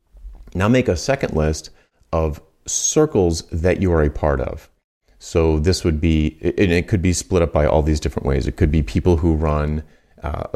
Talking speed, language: 200 wpm, English